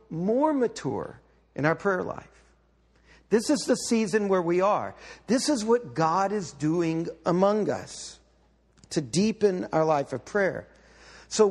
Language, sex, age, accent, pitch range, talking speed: English, male, 60-79, American, 185-245 Hz, 145 wpm